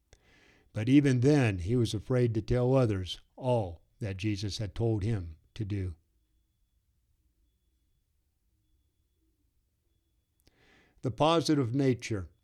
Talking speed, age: 95 wpm, 60-79